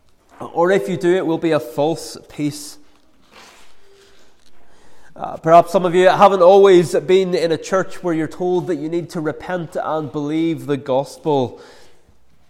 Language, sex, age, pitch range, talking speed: English, male, 20-39, 160-195 Hz, 160 wpm